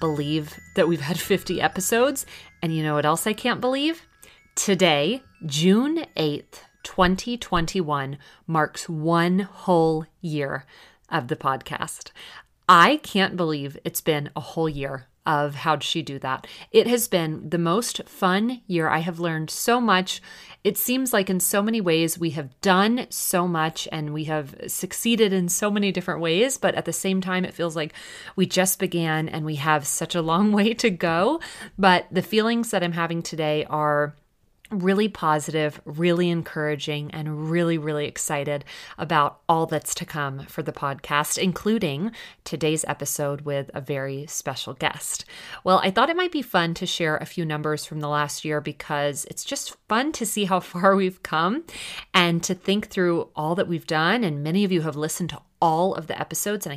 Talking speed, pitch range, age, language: 180 wpm, 155-195 Hz, 30-49, English